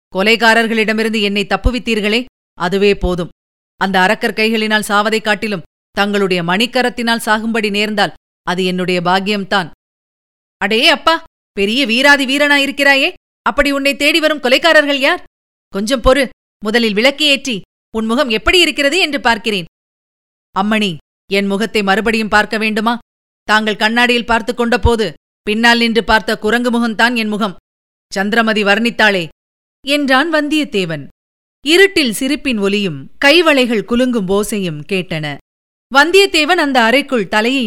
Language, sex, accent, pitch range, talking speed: Tamil, female, native, 200-275 Hz, 105 wpm